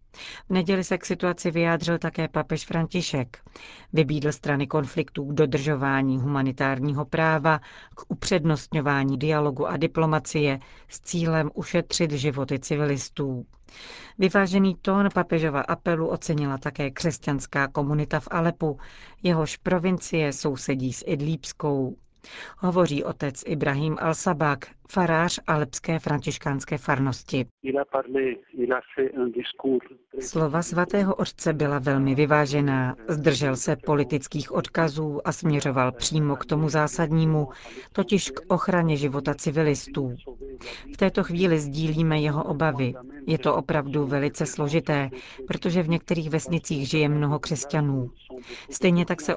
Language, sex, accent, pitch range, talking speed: Czech, female, native, 140-165 Hz, 110 wpm